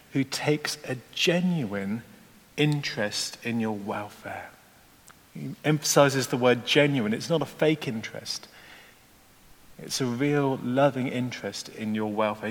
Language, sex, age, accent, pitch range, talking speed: English, male, 40-59, British, 115-140 Hz, 125 wpm